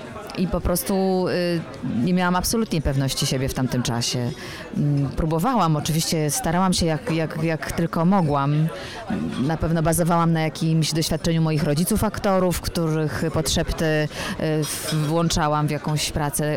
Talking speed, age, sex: 125 wpm, 20-39, female